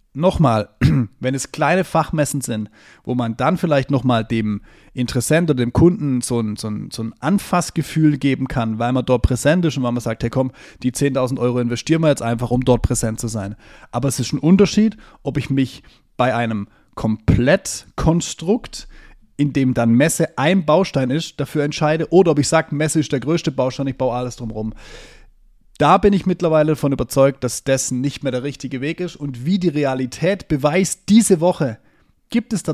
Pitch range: 120-160 Hz